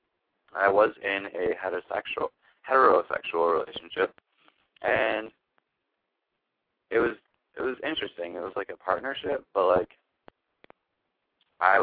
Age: 20-39